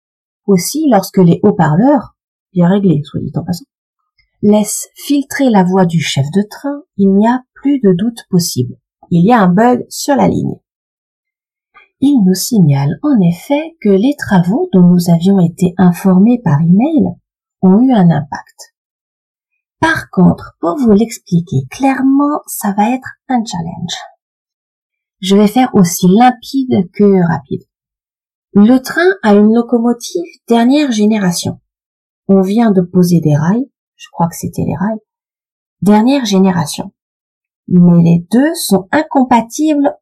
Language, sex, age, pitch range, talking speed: French, female, 40-59, 180-275 Hz, 145 wpm